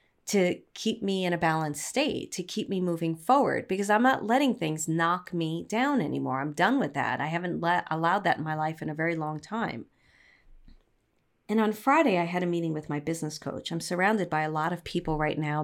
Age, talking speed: 40-59, 225 wpm